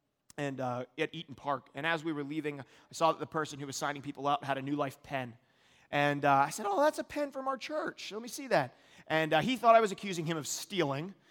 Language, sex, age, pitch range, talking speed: English, male, 30-49, 155-210 Hz, 265 wpm